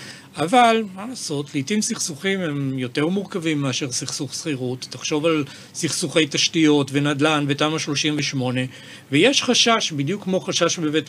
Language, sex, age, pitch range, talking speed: Hebrew, male, 40-59, 140-190 Hz, 130 wpm